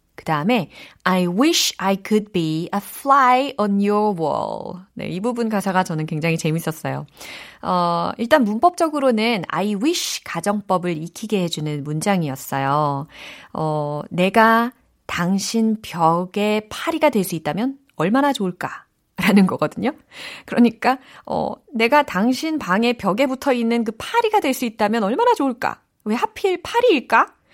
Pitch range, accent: 175-280 Hz, native